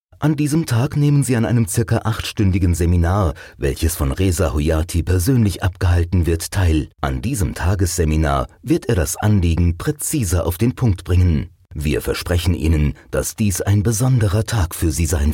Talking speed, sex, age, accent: 160 wpm, male, 30-49, German